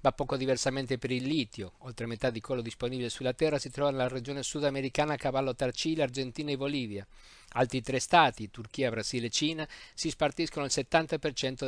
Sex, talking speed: male, 175 wpm